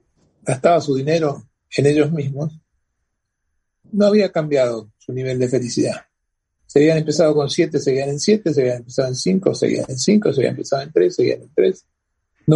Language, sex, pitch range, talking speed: Spanish, male, 130-165 Hz, 180 wpm